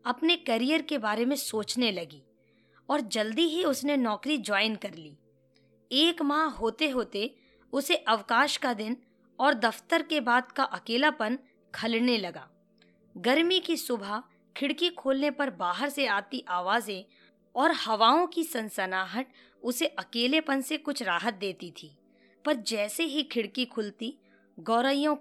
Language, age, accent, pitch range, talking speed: Hindi, 20-39, native, 215-290 Hz, 140 wpm